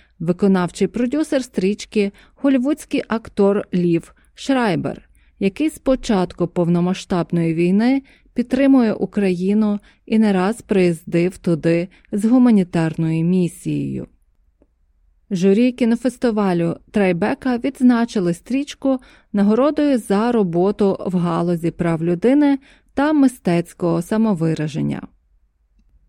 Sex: female